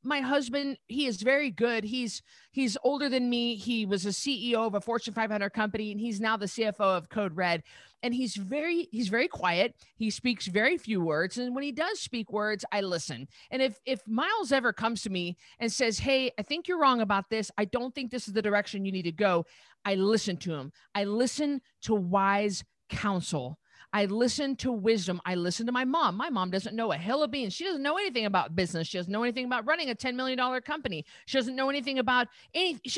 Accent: American